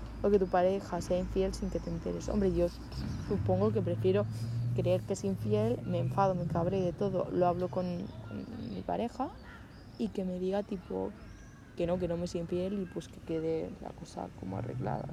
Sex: female